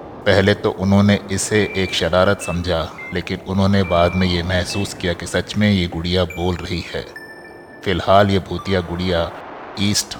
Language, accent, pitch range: Hindi, native, 90-100 Hz